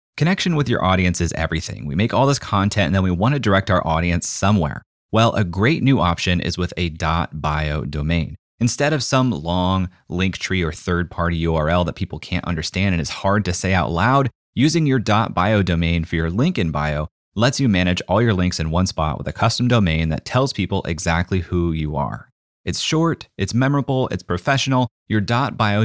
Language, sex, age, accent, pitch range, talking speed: English, male, 30-49, American, 85-115 Hz, 200 wpm